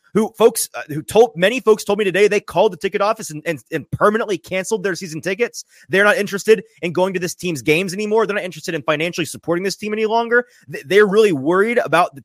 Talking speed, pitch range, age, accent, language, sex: 235 wpm, 145-200 Hz, 30-49, American, English, male